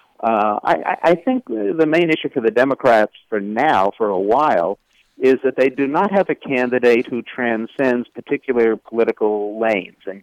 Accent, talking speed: American, 170 wpm